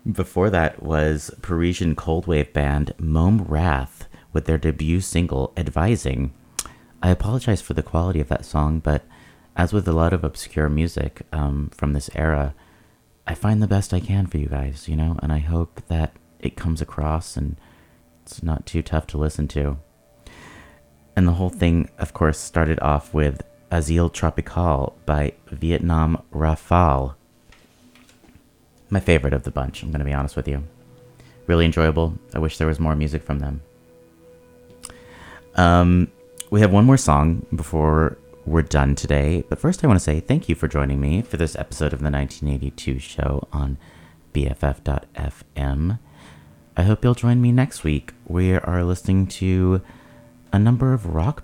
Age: 30-49